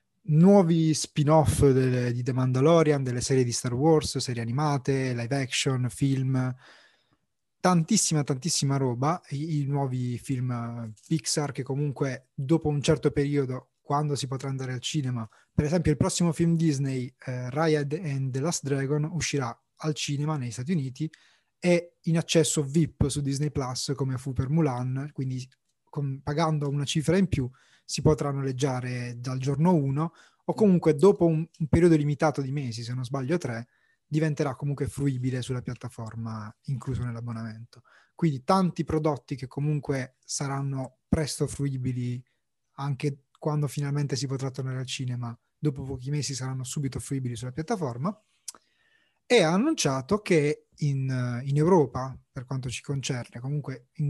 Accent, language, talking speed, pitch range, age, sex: native, Italian, 150 wpm, 130-155 Hz, 20-39, male